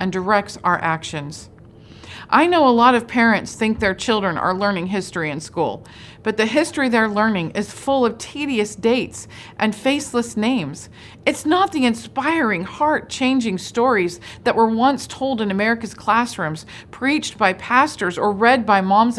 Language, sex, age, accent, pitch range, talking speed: English, female, 40-59, American, 185-250 Hz, 160 wpm